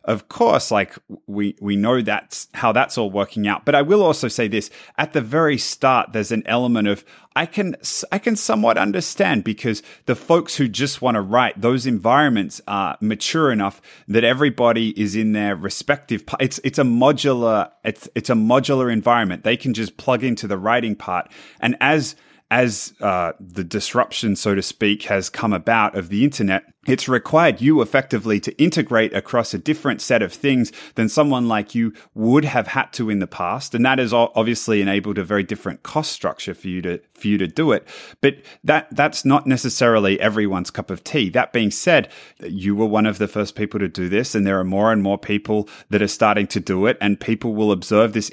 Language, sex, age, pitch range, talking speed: English, male, 30-49, 105-125 Hz, 205 wpm